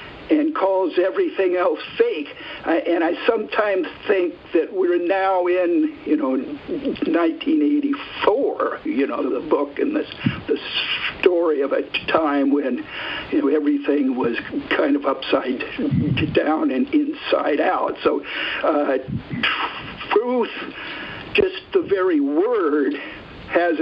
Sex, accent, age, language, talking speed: male, American, 60-79, English, 120 wpm